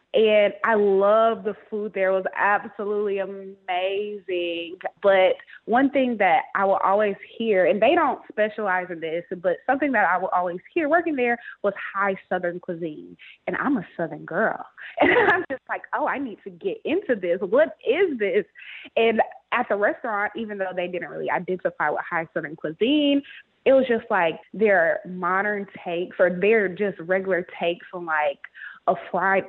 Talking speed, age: 175 wpm, 20-39